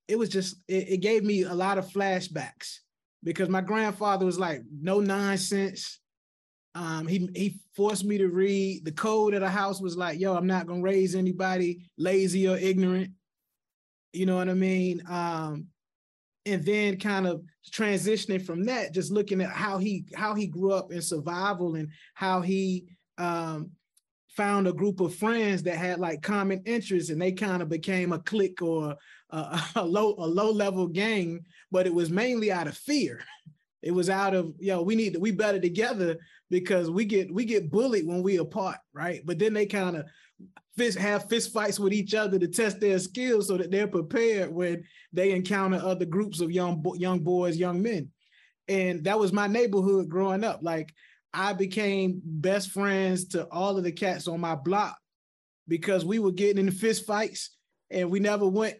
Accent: American